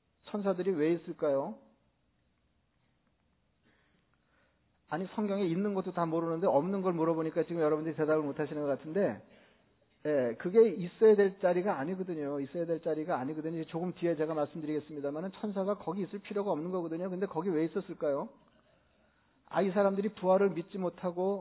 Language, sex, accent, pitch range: Korean, male, native, 165-200 Hz